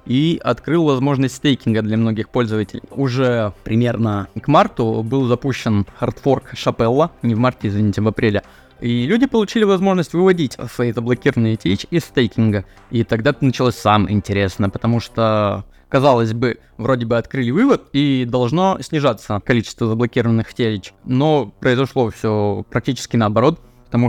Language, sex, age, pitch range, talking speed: Russian, male, 20-39, 110-135 Hz, 140 wpm